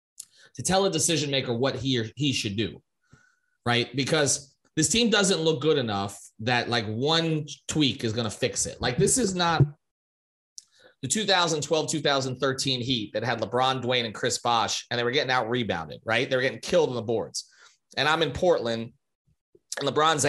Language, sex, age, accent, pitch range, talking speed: English, male, 30-49, American, 120-155 Hz, 185 wpm